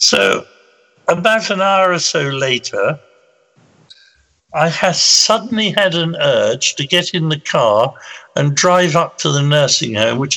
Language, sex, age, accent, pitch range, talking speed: English, male, 60-79, British, 125-180 Hz, 145 wpm